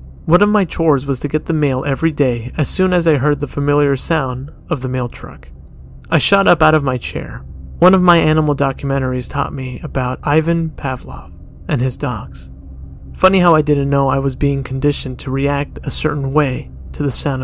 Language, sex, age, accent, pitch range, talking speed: English, male, 30-49, American, 125-160 Hz, 205 wpm